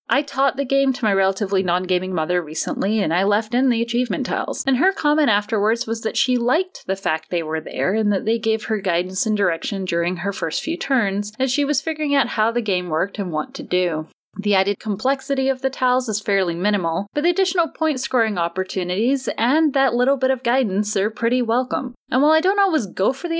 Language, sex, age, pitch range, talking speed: English, female, 10-29, 180-265 Hz, 225 wpm